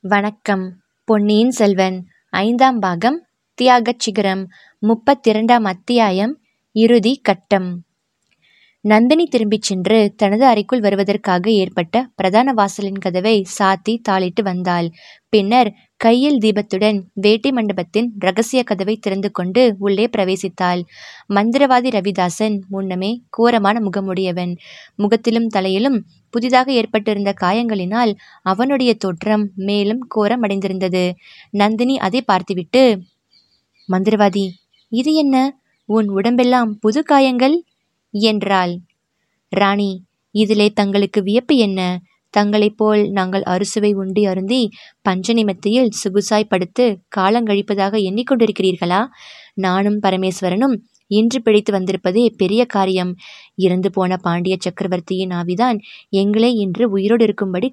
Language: Tamil